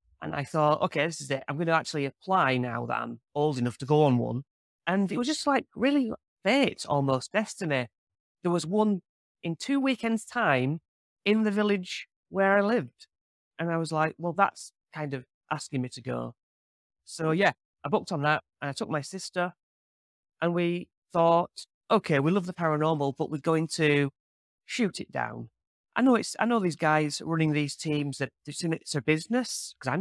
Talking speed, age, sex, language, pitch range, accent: 190 wpm, 30-49, male, English, 140-180 Hz, British